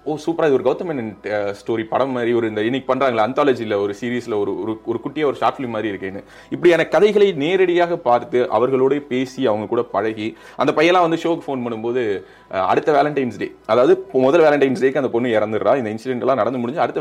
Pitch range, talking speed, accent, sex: 105-160 Hz, 190 wpm, native, male